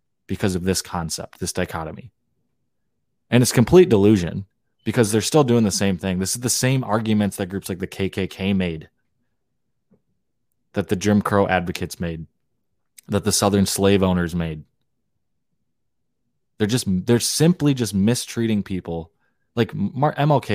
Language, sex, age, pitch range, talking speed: English, male, 20-39, 90-115 Hz, 145 wpm